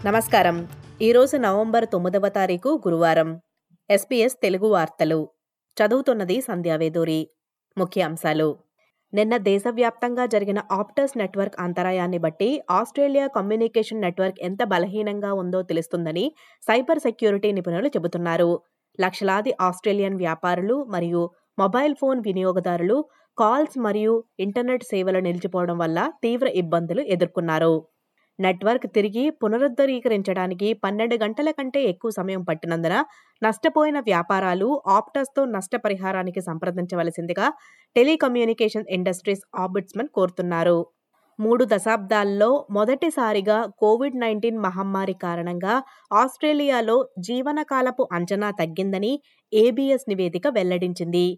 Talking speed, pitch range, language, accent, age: 85 wpm, 180-240 Hz, Telugu, native, 20-39